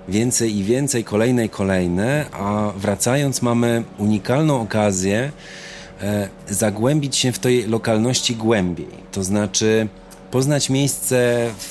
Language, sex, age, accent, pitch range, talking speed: Polish, male, 30-49, native, 100-120 Hz, 115 wpm